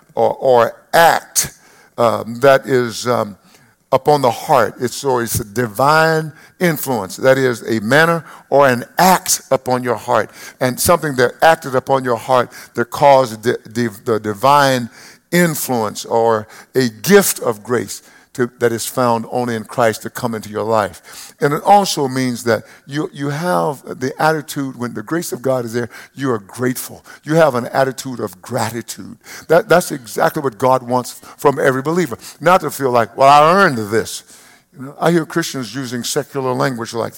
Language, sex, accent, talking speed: English, male, American, 175 wpm